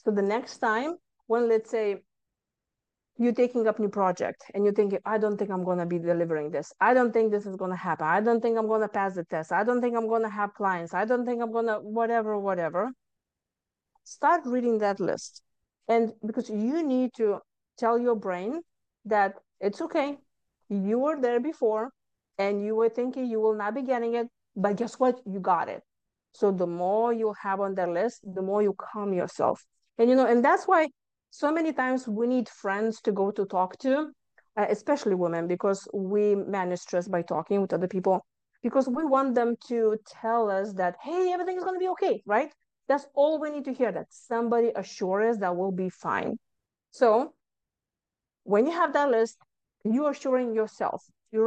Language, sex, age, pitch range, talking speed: English, female, 50-69, 200-250 Hz, 205 wpm